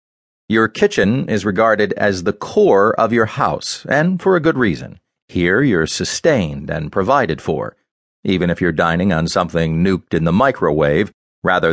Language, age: English, 40-59